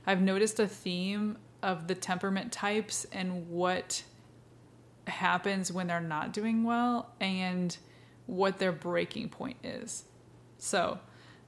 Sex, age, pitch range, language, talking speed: female, 20-39, 175-195 Hz, English, 120 wpm